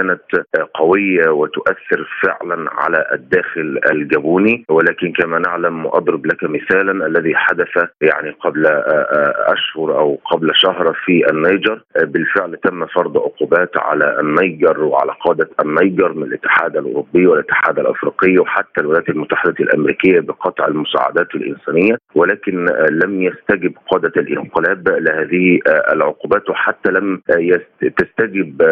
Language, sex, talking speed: Arabic, male, 110 wpm